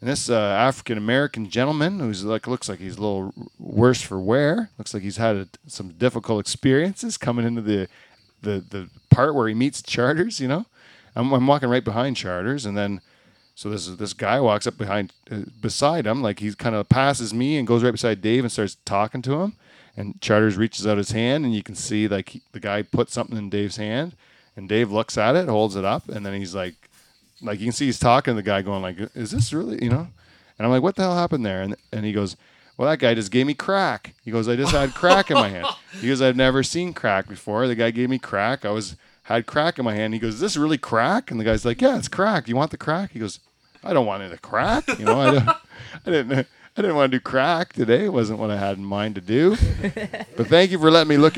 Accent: American